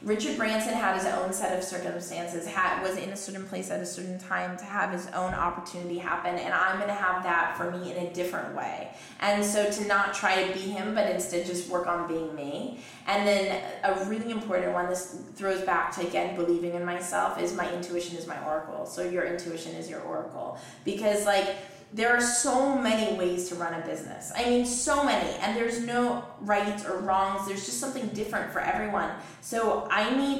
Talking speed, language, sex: 210 wpm, English, female